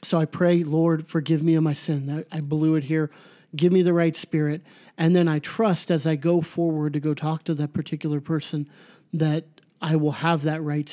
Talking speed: 215 wpm